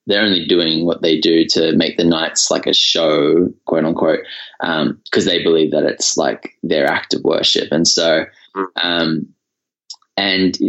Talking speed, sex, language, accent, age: 170 wpm, male, English, Australian, 10-29